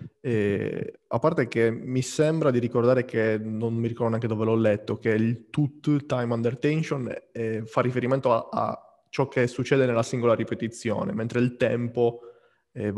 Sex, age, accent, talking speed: male, 20-39, native, 170 wpm